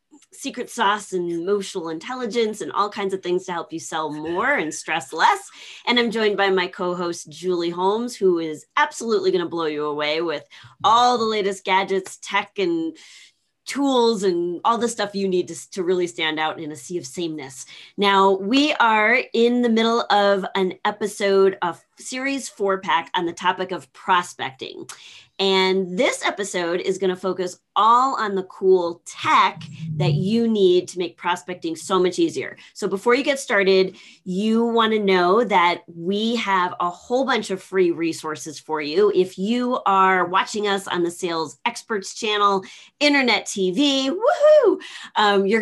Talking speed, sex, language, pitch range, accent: 170 wpm, female, English, 175-225 Hz, American